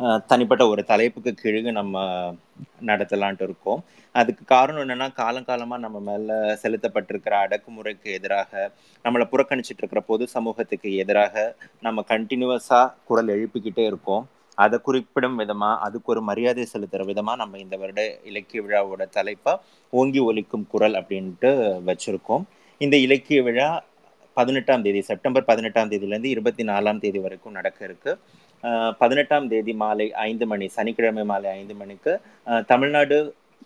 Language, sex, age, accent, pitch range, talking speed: Tamil, male, 30-49, native, 100-125 Hz, 130 wpm